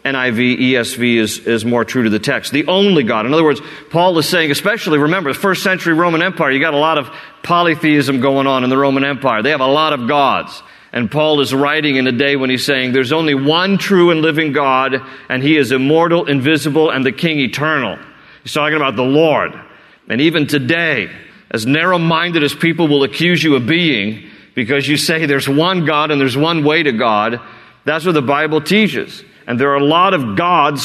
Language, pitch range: English, 130-155 Hz